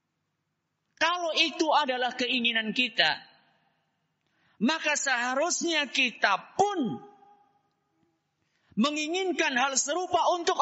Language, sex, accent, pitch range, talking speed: Indonesian, male, native, 195-285 Hz, 75 wpm